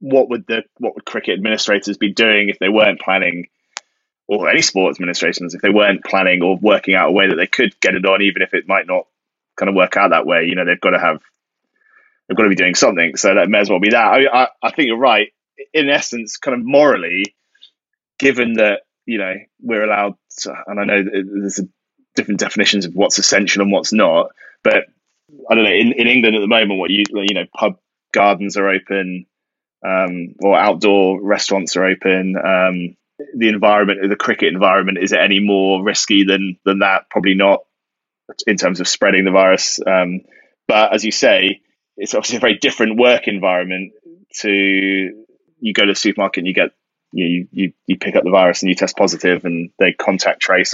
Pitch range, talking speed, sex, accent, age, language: 95-110 Hz, 205 wpm, male, British, 20-39, English